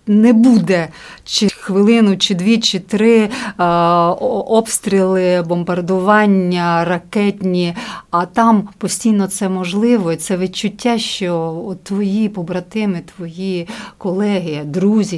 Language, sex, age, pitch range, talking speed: Ukrainian, female, 40-59, 175-210 Hz, 100 wpm